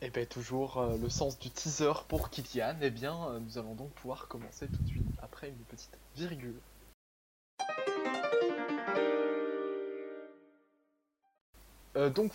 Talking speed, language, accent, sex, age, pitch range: 140 wpm, French, French, male, 20-39, 115-155 Hz